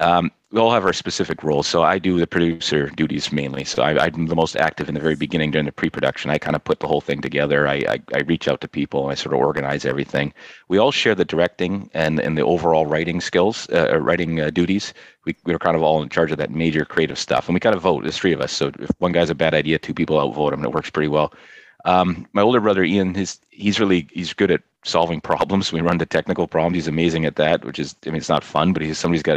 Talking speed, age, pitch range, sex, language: 270 wpm, 30-49, 80-90 Hz, male, English